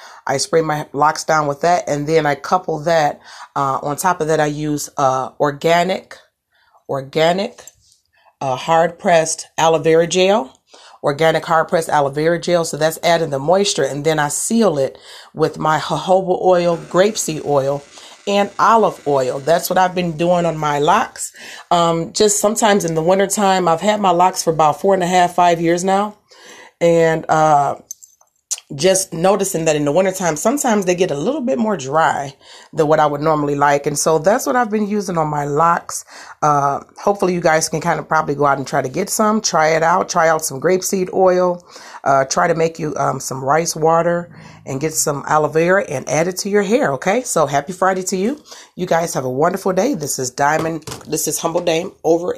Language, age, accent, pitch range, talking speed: English, 40-59, American, 150-185 Hz, 200 wpm